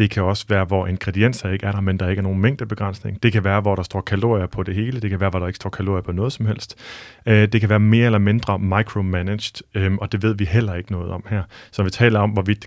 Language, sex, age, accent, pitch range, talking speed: Danish, male, 30-49, native, 95-110 Hz, 280 wpm